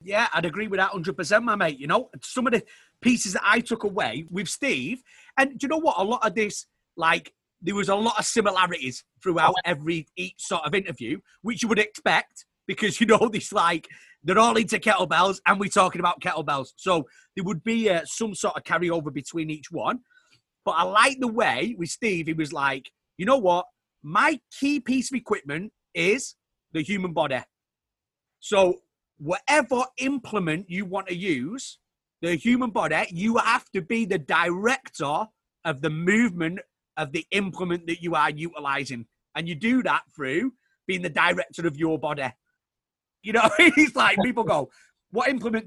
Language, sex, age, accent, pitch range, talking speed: English, male, 30-49, British, 170-235 Hz, 180 wpm